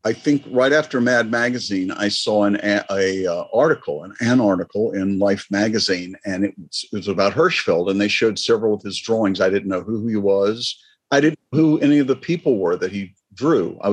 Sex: male